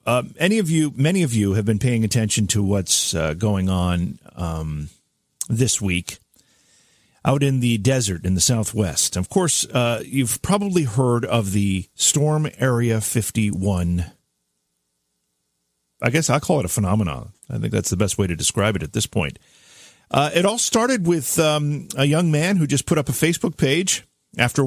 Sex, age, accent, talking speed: male, 50-69, American, 180 wpm